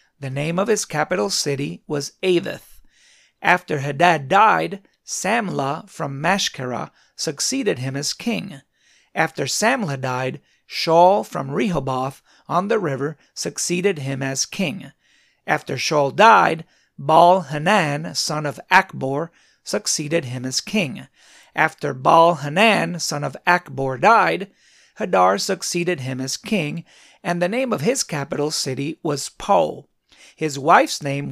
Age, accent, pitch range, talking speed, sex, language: 40-59, American, 140-195 Hz, 125 wpm, male, English